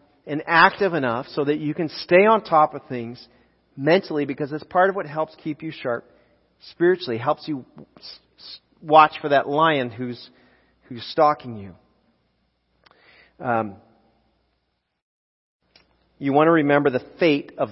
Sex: male